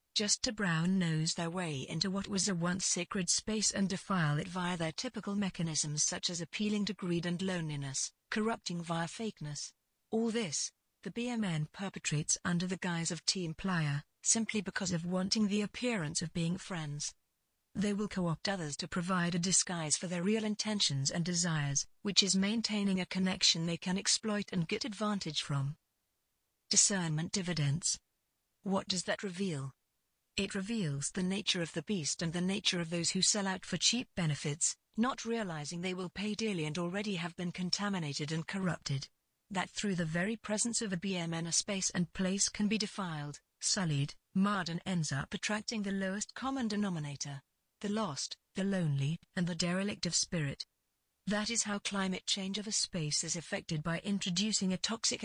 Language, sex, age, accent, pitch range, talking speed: English, female, 50-69, British, 165-205 Hz, 175 wpm